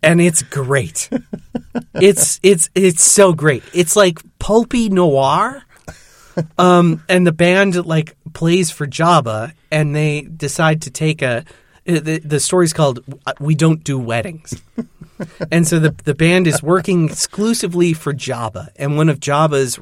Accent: American